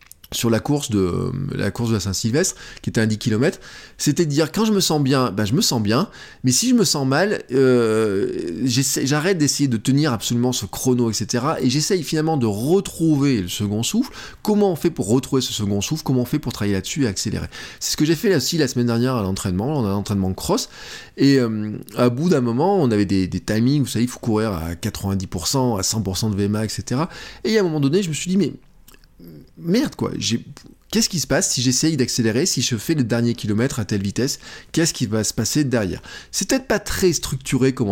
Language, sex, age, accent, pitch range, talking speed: French, male, 20-39, French, 115-150 Hz, 235 wpm